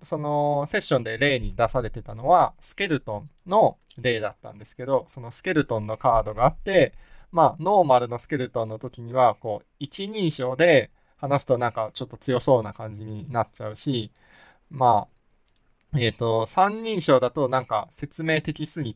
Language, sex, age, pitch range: Japanese, male, 20-39, 115-155 Hz